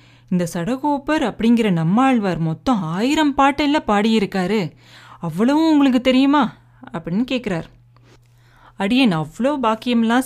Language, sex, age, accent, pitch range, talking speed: Tamil, female, 30-49, native, 160-245 Hz, 95 wpm